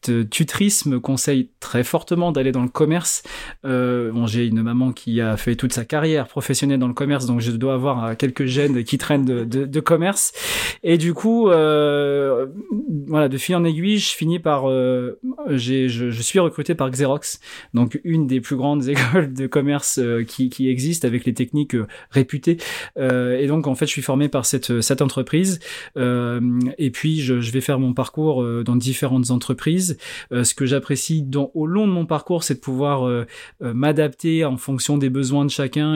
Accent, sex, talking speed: French, male, 190 wpm